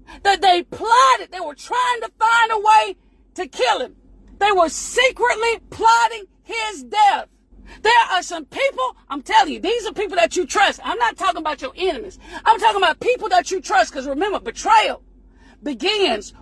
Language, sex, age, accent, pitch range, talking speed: English, female, 40-59, American, 330-440 Hz, 180 wpm